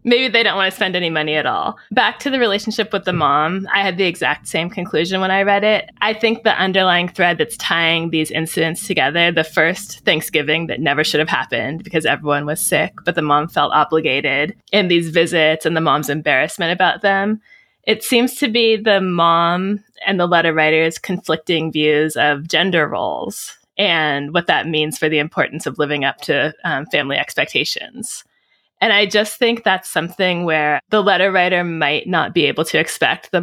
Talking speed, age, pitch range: 195 wpm, 20-39, 155-195 Hz